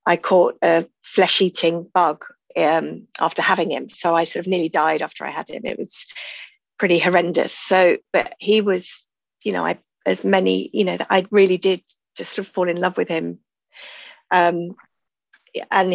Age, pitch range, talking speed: 30-49, 175-200 Hz, 175 wpm